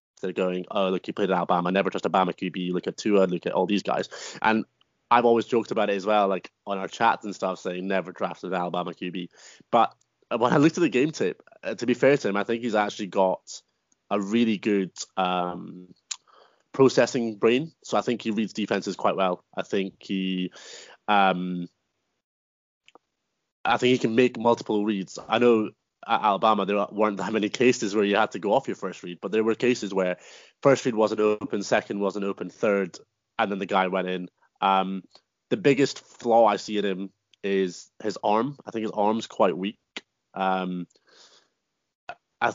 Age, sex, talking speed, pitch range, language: 20-39, male, 195 wpm, 95-110 Hz, English